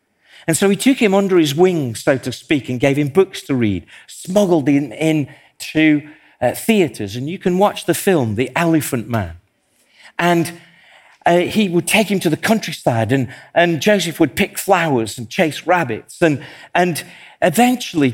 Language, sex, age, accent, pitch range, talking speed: English, male, 50-69, British, 115-165 Hz, 175 wpm